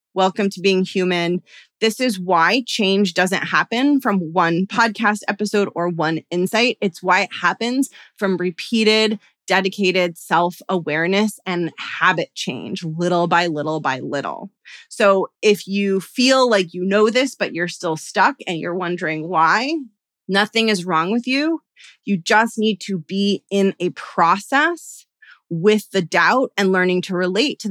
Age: 30-49